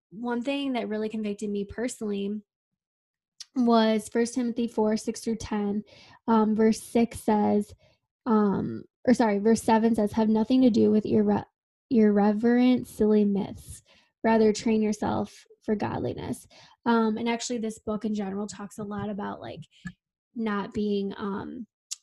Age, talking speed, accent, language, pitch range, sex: 10-29, 145 wpm, American, English, 210-235 Hz, female